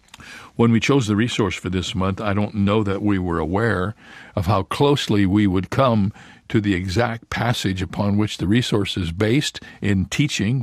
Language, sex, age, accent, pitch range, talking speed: English, male, 60-79, American, 95-115 Hz, 185 wpm